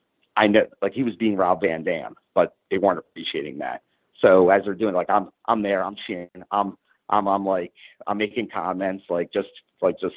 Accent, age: American, 40-59